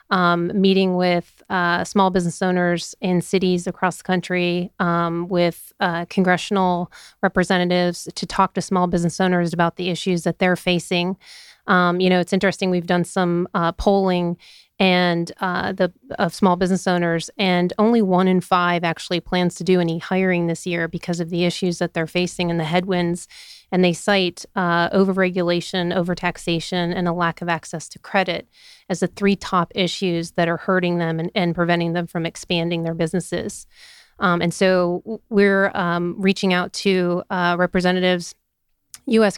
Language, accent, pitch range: English, American, 175-190 Hz